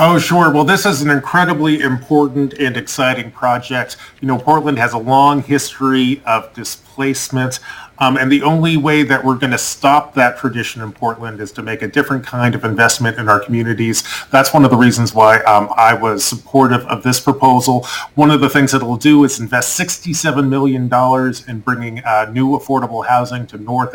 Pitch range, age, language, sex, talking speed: 120-145 Hz, 30-49, English, male, 195 wpm